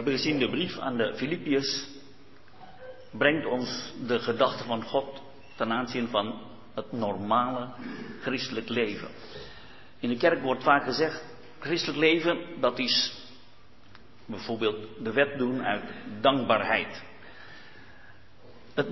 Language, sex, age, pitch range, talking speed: Dutch, male, 50-69, 125-165 Hz, 120 wpm